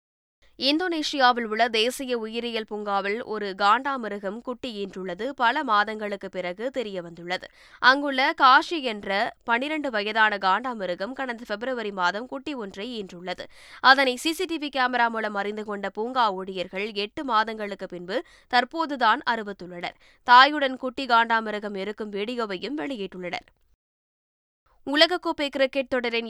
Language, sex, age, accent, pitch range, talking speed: Tamil, female, 20-39, native, 205-255 Hz, 105 wpm